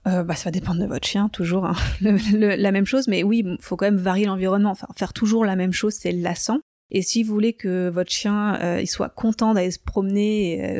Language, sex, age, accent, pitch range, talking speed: French, female, 20-39, French, 180-215 Hz, 250 wpm